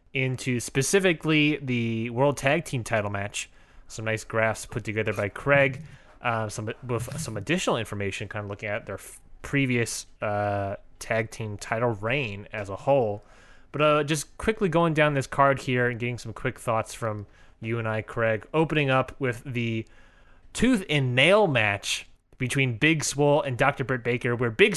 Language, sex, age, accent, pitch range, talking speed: English, male, 20-39, American, 110-145 Hz, 175 wpm